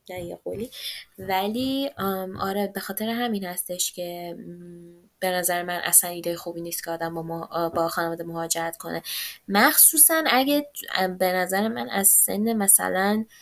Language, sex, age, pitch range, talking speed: Persian, female, 20-39, 175-215 Hz, 145 wpm